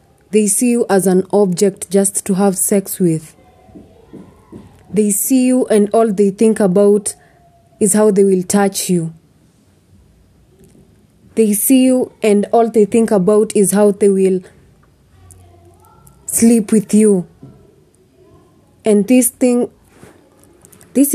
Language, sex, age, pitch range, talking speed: English, female, 20-39, 170-220 Hz, 125 wpm